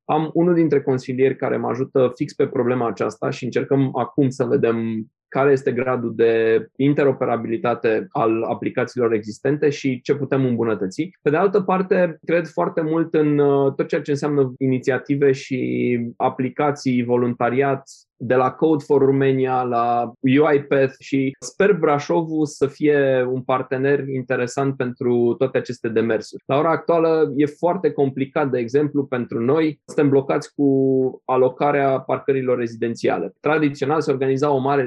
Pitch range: 125-150 Hz